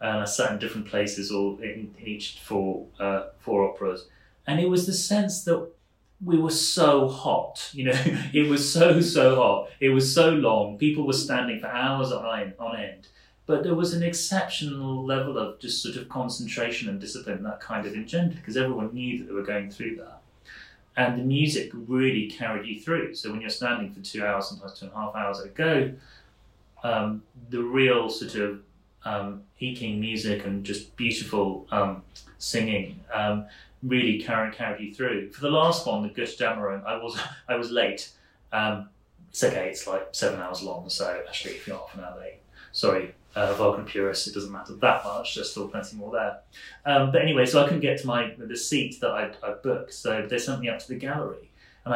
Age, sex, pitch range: 30-49, male, 105-140 Hz